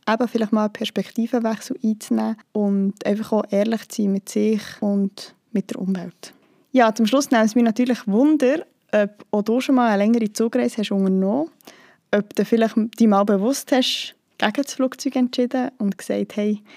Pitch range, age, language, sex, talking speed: 205-250 Hz, 20-39, German, female, 175 wpm